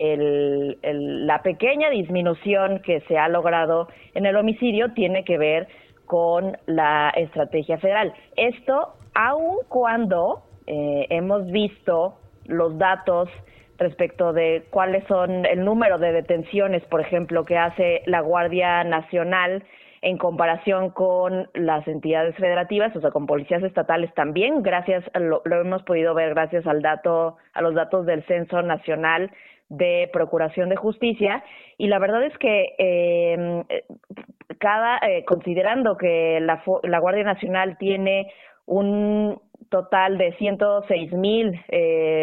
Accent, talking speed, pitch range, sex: Mexican, 135 wpm, 170-205 Hz, female